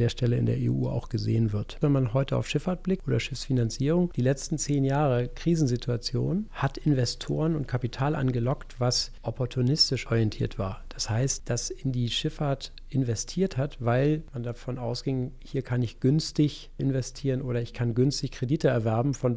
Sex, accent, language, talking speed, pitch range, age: male, German, German, 165 wpm, 120-140 Hz, 40-59